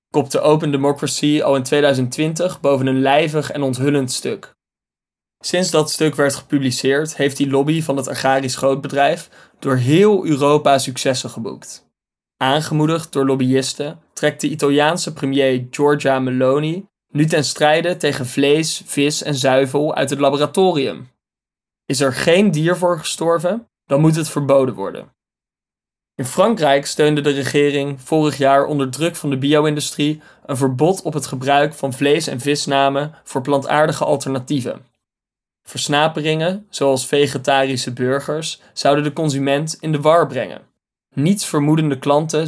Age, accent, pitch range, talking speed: 20-39, Dutch, 135-155 Hz, 140 wpm